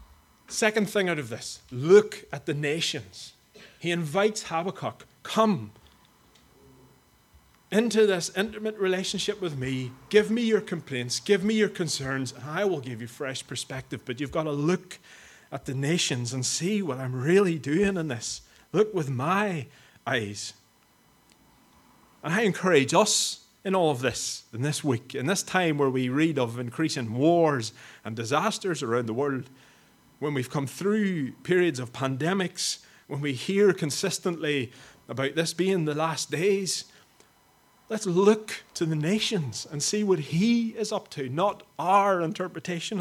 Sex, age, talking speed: male, 30-49, 155 wpm